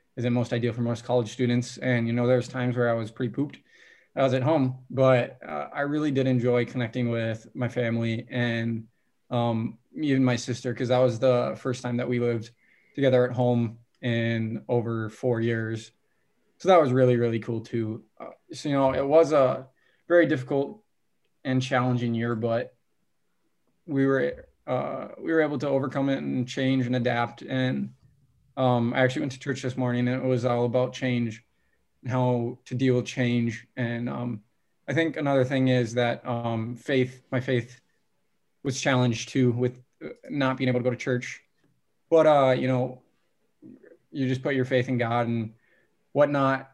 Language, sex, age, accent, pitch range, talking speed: English, male, 20-39, American, 120-130 Hz, 185 wpm